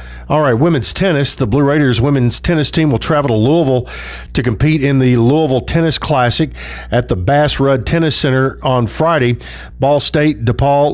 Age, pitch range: 50-69, 120-145 Hz